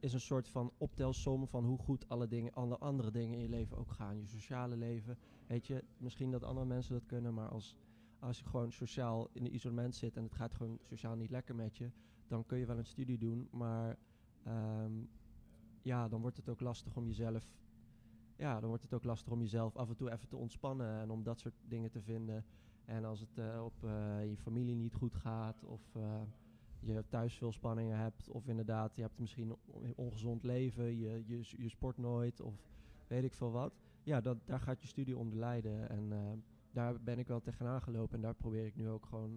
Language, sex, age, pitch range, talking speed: Dutch, male, 20-39, 110-120 Hz, 220 wpm